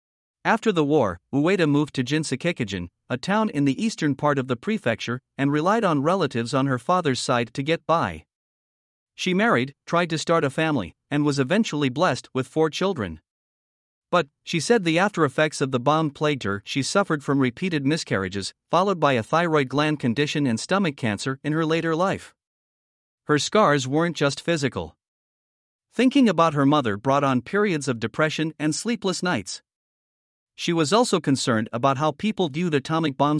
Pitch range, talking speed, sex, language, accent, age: 125-170 Hz, 170 wpm, male, English, American, 50-69